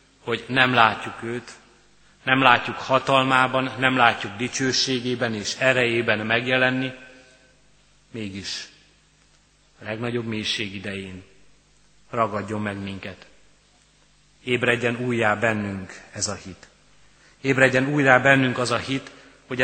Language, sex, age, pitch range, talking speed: Hungarian, male, 30-49, 110-130 Hz, 105 wpm